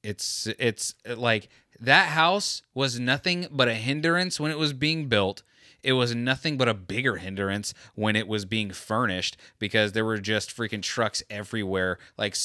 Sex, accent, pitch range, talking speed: male, American, 100-125 Hz, 170 wpm